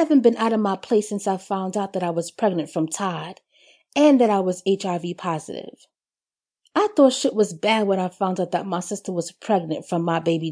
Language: English